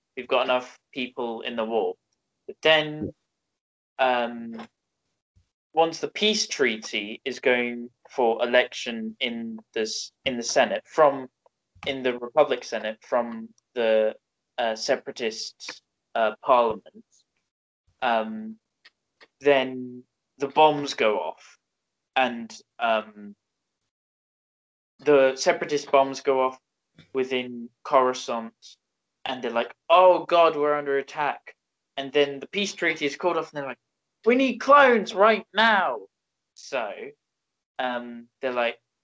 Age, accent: 10-29, British